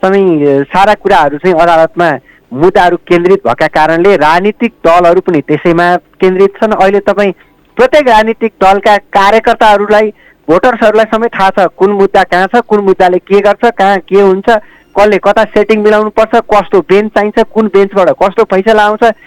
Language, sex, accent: English, male, Indian